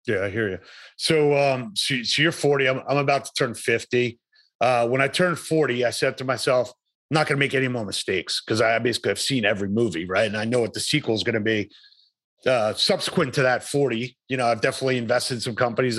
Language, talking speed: English, 240 wpm